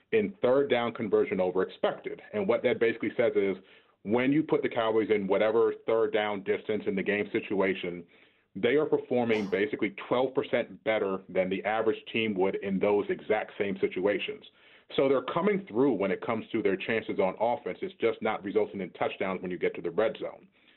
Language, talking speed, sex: English, 195 wpm, male